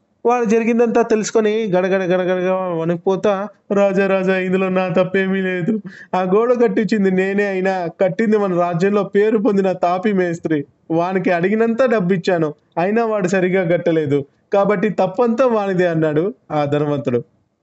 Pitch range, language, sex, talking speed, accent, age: 170-215 Hz, Telugu, male, 125 wpm, native, 20-39